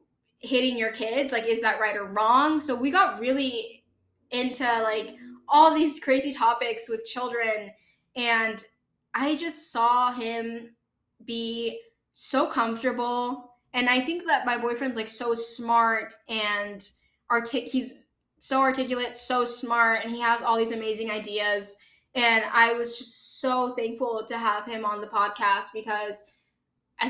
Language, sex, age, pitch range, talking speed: English, female, 10-29, 215-245 Hz, 145 wpm